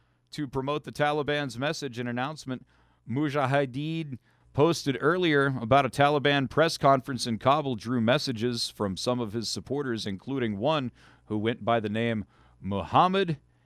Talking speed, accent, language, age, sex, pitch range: 140 wpm, American, English, 50-69, male, 95-145 Hz